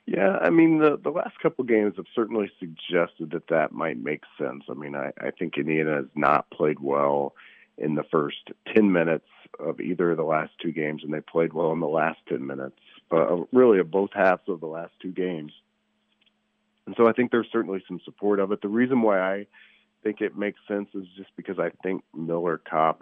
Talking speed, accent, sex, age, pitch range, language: 215 wpm, American, male, 40-59, 75-100 Hz, English